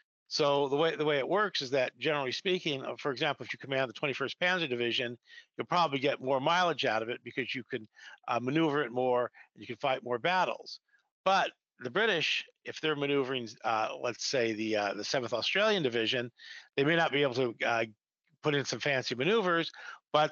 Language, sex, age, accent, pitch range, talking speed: English, male, 50-69, American, 125-150 Hz, 205 wpm